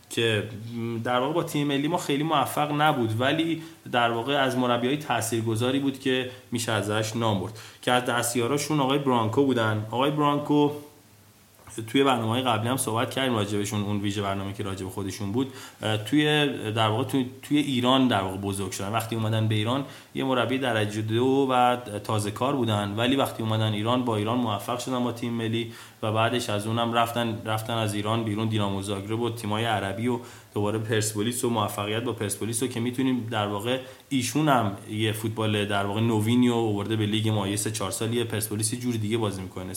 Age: 30-49